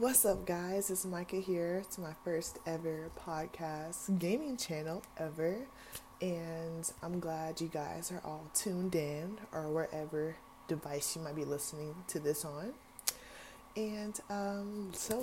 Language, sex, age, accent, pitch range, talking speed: English, female, 20-39, American, 150-190 Hz, 140 wpm